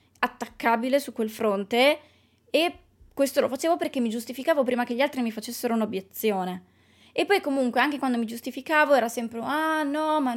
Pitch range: 215-270 Hz